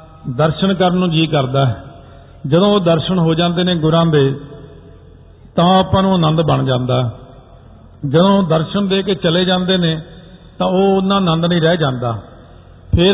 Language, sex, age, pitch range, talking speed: Punjabi, male, 50-69, 150-180 Hz, 160 wpm